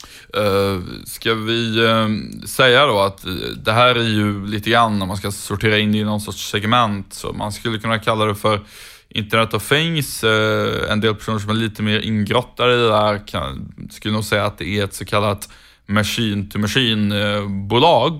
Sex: male